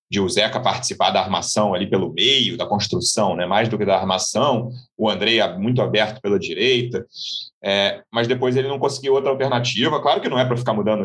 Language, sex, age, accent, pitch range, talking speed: Portuguese, male, 30-49, Brazilian, 105-125 Hz, 200 wpm